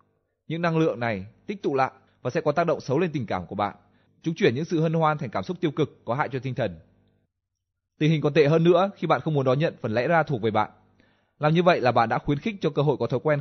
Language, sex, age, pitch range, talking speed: Vietnamese, male, 20-39, 110-160 Hz, 295 wpm